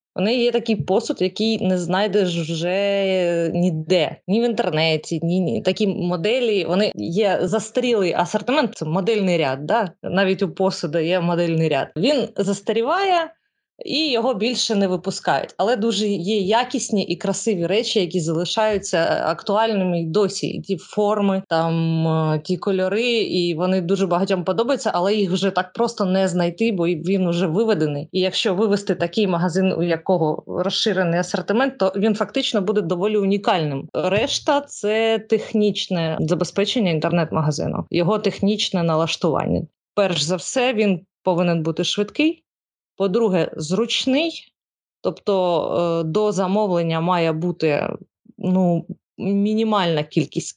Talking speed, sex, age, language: 130 wpm, female, 20-39, Ukrainian